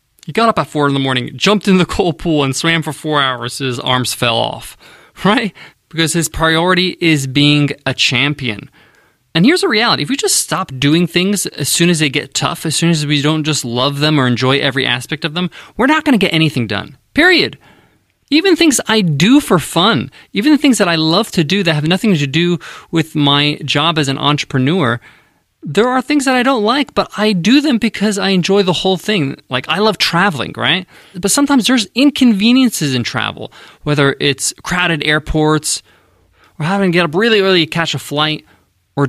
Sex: male